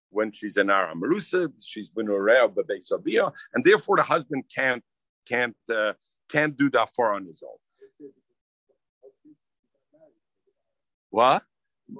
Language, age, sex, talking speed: English, 50-69, male, 120 wpm